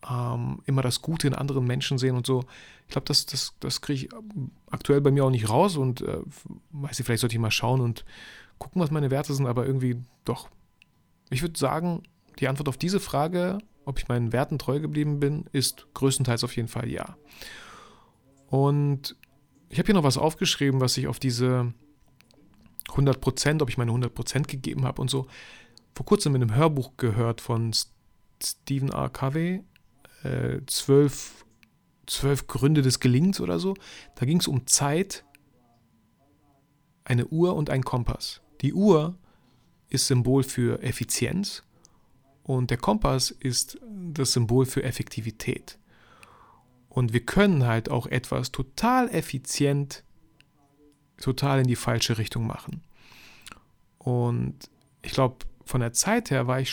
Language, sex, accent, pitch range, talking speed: German, male, German, 125-145 Hz, 150 wpm